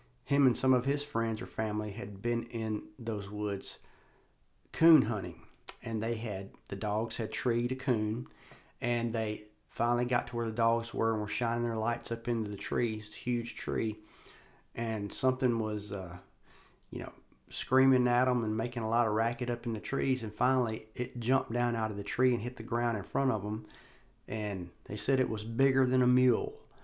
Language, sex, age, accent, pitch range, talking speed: English, male, 40-59, American, 100-120 Hz, 200 wpm